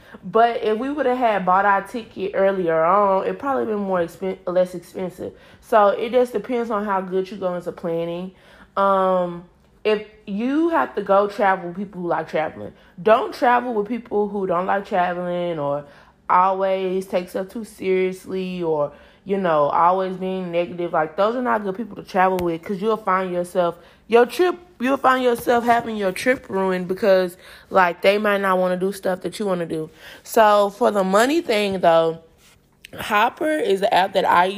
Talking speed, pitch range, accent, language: 190 wpm, 180-220 Hz, American, English